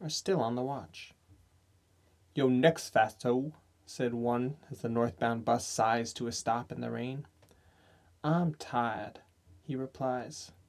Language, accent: English, American